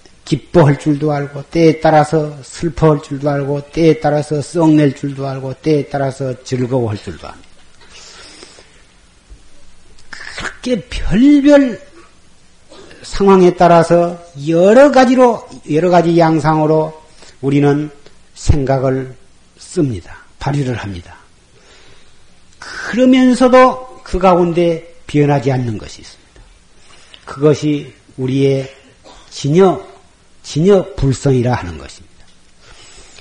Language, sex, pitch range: Korean, male, 135-180 Hz